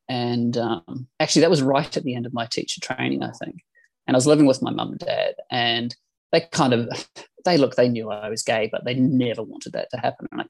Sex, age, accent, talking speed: male, 20-39, Australian, 250 wpm